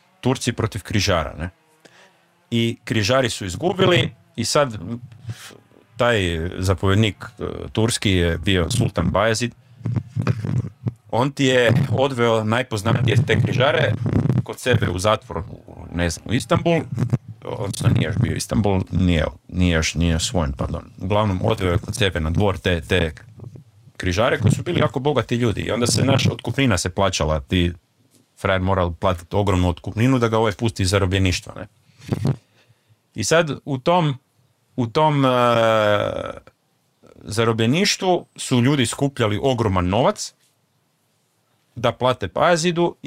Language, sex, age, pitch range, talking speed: Croatian, male, 40-59, 105-130 Hz, 125 wpm